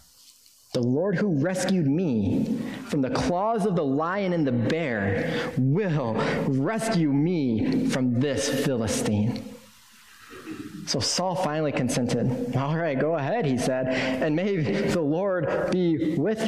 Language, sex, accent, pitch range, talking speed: English, male, American, 135-225 Hz, 130 wpm